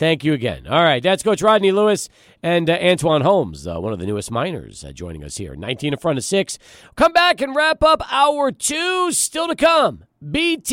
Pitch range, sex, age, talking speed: 160-230 Hz, male, 40-59, 220 wpm